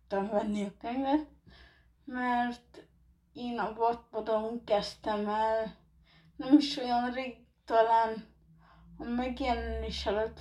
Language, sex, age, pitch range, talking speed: Hungarian, female, 20-39, 220-285 Hz, 100 wpm